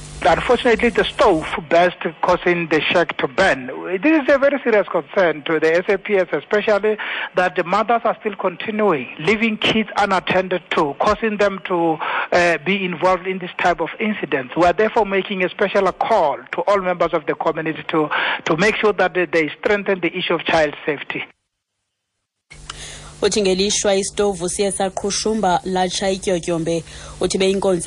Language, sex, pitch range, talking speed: English, male, 175-200 Hz, 165 wpm